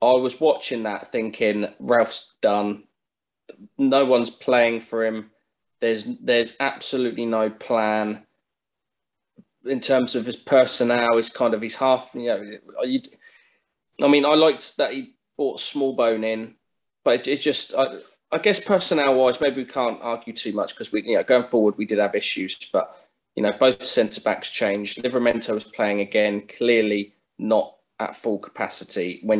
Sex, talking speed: male, 160 wpm